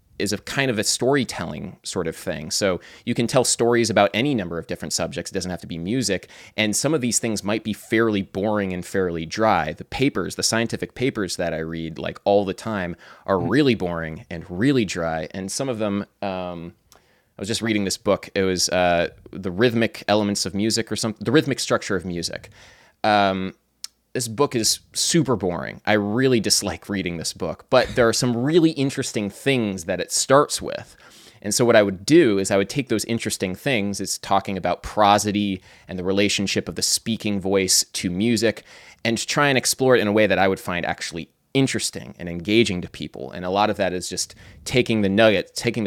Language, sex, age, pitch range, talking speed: English, male, 20-39, 90-115 Hz, 210 wpm